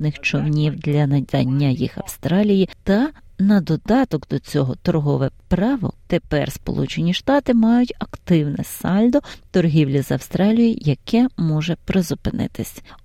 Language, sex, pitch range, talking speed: Ukrainian, female, 155-225 Hz, 110 wpm